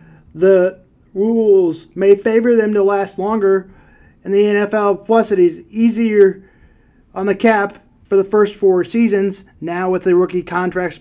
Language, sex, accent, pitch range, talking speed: English, male, American, 175-220 Hz, 155 wpm